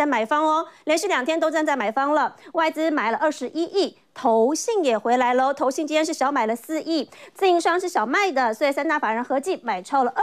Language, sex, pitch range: Chinese, female, 260-330 Hz